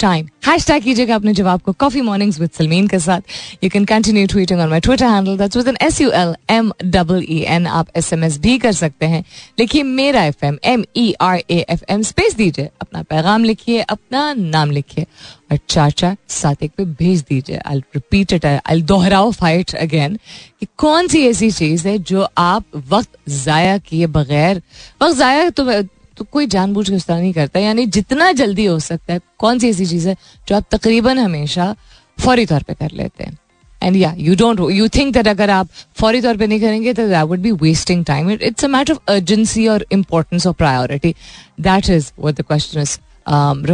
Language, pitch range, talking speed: Hindi, 165-220 Hz, 130 wpm